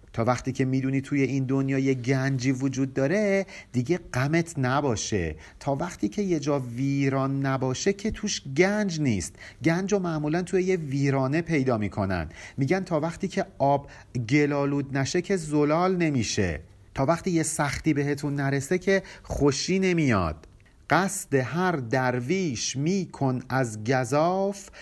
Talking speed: 140 wpm